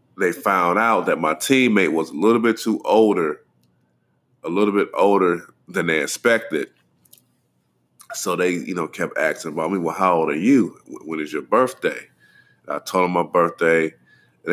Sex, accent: male, American